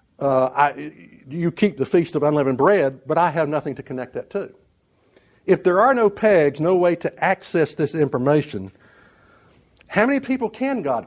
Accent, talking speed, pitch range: American, 180 wpm, 135-180 Hz